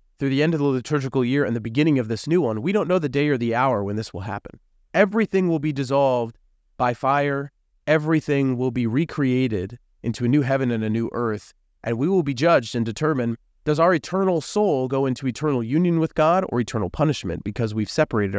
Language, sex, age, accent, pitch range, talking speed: English, male, 30-49, American, 100-135 Hz, 220 wpm